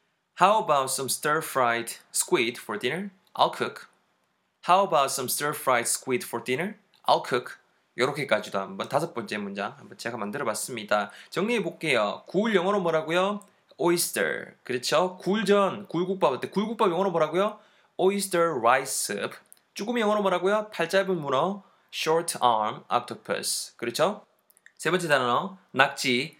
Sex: male